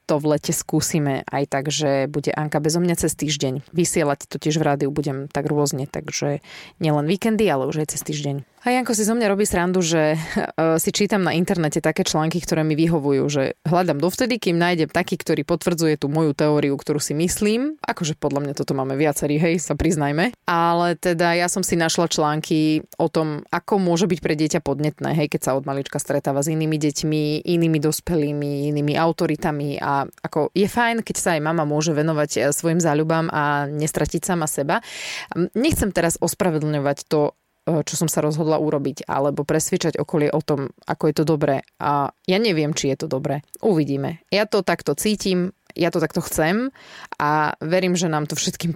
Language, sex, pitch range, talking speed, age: Slovak, female, 150-175 Hz, 190 wpm, 20-39